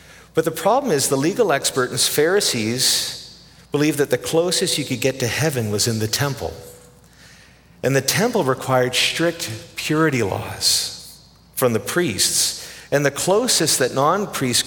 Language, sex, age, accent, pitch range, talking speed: English, male, 50-69, American, 110-150 Hz, 150 wpm